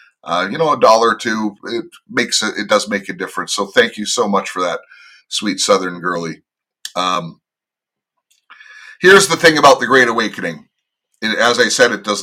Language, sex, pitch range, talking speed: English, male, 110-140 Hz, 190 wpm